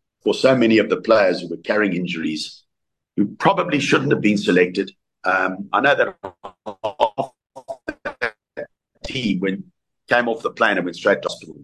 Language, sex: English, male